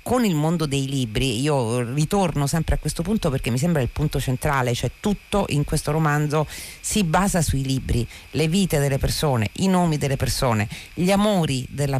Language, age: Italian, 50-69